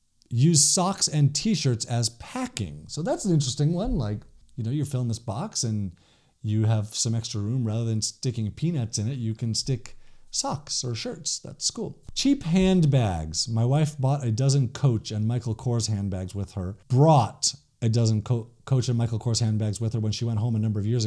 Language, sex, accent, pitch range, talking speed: English, male, American, 110-150 Hz, 200 wpm